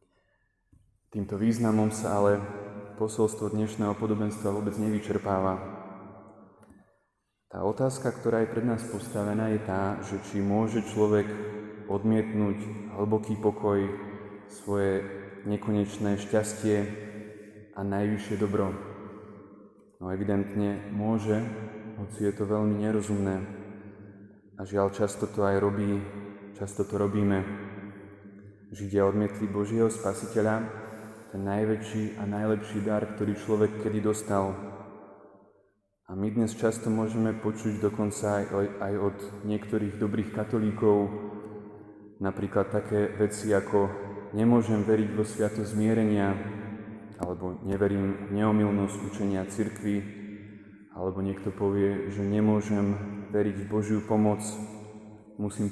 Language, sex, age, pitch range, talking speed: Slovak, male, 20-39, 100-105 Hz, 100 wpm